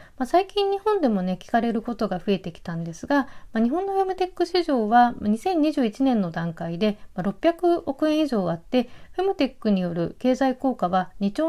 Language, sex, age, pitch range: Japanese, female, 40-59, 185-300 Hz